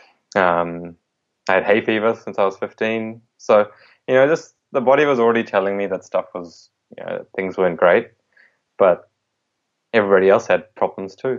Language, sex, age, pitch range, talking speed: English, male, 20-39, 90-110 Hz, 175 wpm